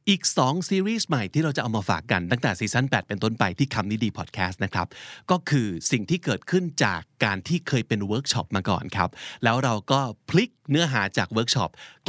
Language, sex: Thai, male